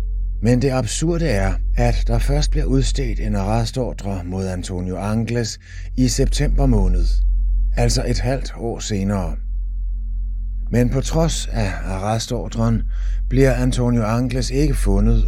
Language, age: Danish, 30-49